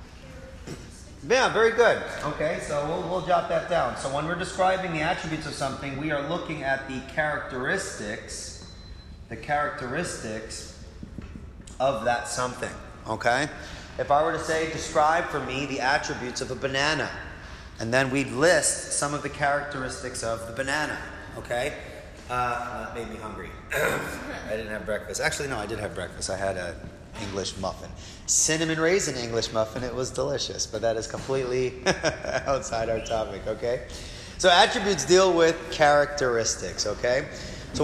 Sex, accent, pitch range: male, American, 110-150 Hz